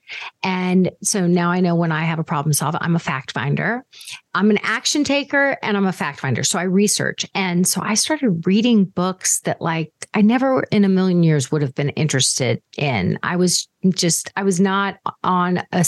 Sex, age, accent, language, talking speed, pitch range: female, 40-59, American, English, 205 wpm, 160-200 Hz